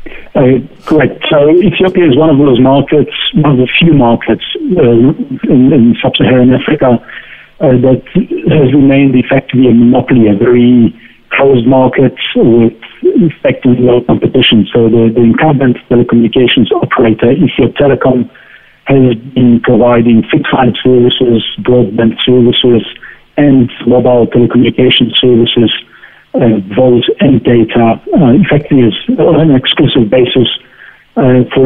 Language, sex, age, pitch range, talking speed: English, male, 60-79, 120-135 Hz, 125 wpm